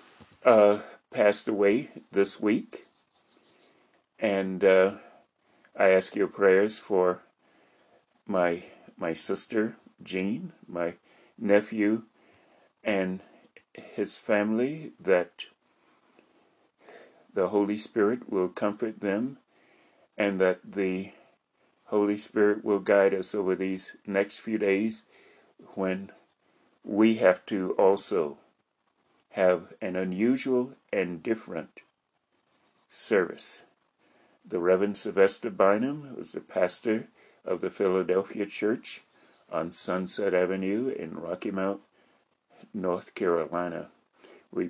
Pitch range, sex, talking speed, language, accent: 95-105 Hz, male, 95 wpm, English, American